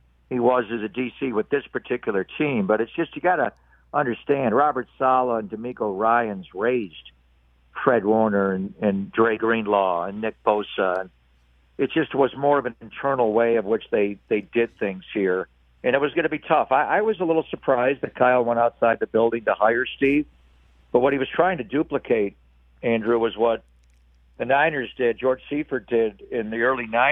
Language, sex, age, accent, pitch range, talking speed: English, male, 60-79, American, 100-135 Hz, 190 wpm